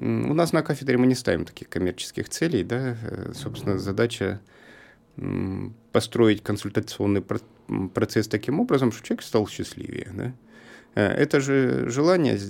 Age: 30-49